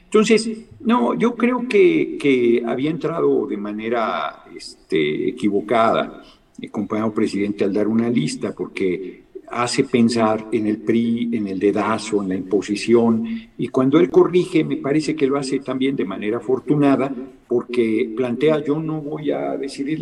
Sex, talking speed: male, 155 wpm